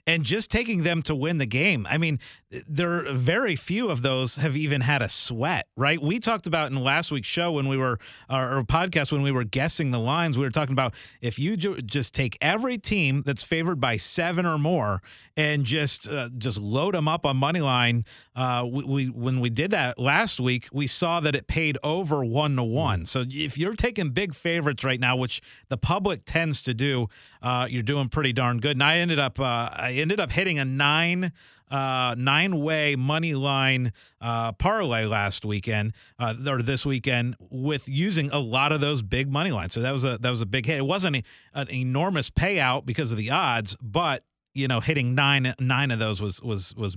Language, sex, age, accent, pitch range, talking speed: English, male, 40-59, American, 125-160 Hz, 210 wpm